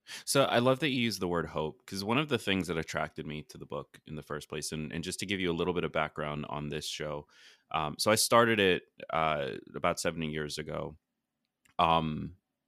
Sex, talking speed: male, 230 wpm